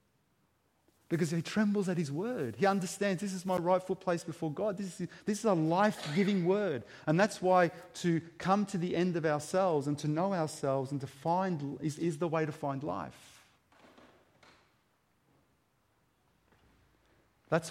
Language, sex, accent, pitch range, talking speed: English, male, Australian, 130-175 Hz, 160 wpm